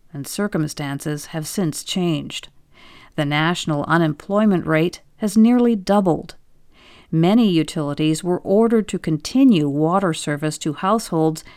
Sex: female